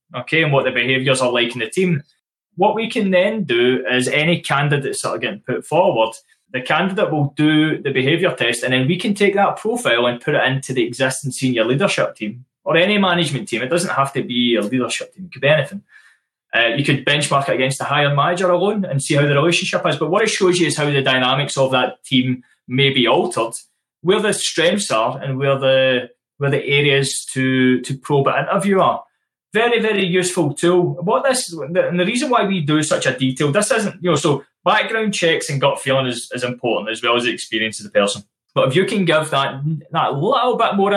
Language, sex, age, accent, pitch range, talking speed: English, male, 20-39, British, 130-180 Hz, 225 wpm